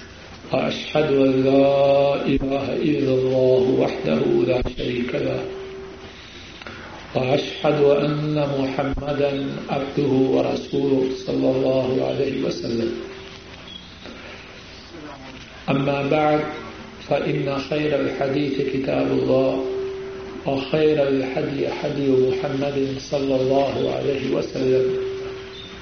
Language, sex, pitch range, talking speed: Urdu, male, 130-145 Hz, 70 wpm